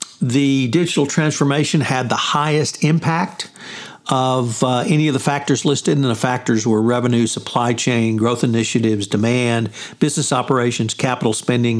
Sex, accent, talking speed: male, American, 140 wpm